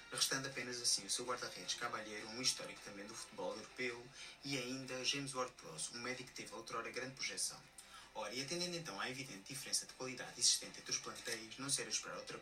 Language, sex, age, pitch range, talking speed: Portuguese, male, 20-39, 115-135 Hz, 215 wpm